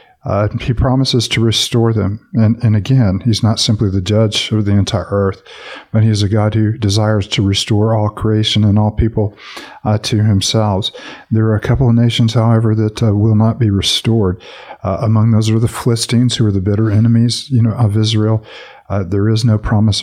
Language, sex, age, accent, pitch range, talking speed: English, male, 50-69, American, 100-115 Hz, 200 wpm